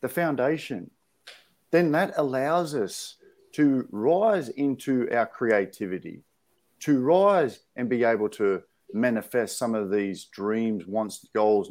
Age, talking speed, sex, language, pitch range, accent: 50-69, 125 wpm, male, English, 120-175 Hz, Australian